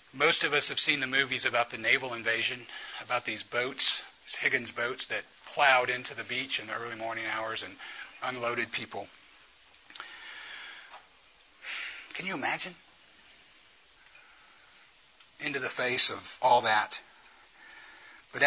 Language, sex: English, male